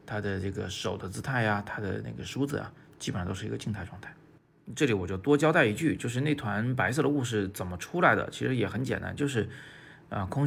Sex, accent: male, native